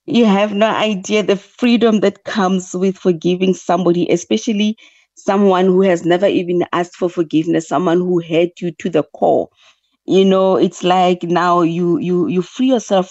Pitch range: 170-215 Hz